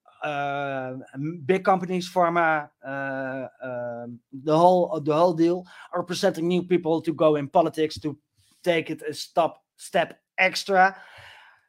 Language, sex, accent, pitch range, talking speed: English, male, Dutch, 145-185 Hz, 135 wpm